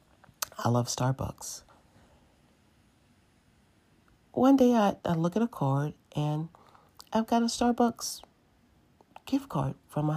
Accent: American